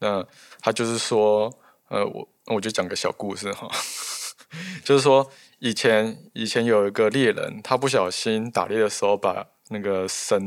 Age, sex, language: 20-39, male, Chinese